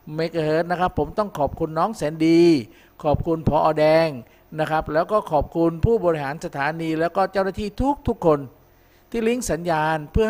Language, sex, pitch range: Thai, male, 145-195 Hz